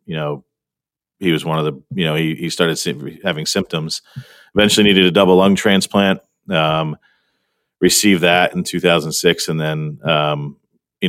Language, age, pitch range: English, 40-59, 80-85 Hz